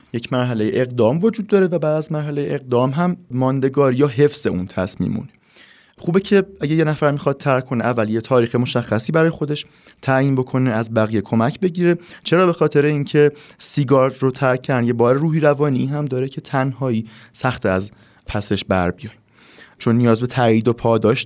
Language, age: Persian, 30-49